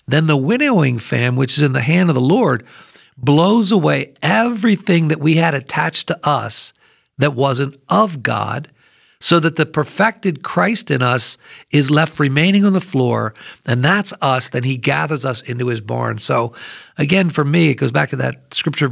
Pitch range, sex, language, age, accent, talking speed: 135-175 Hz, male, English, 50-69, American, 185 wpm